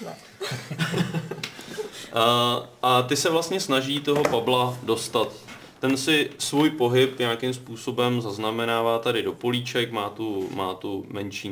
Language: Czech